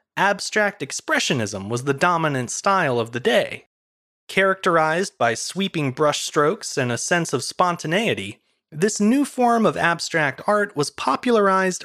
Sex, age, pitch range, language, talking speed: male, 30-49, 145-220 Hz, English, 130 wpm